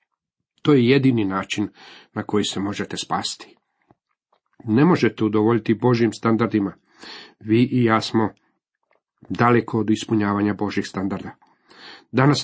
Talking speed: 115 wpm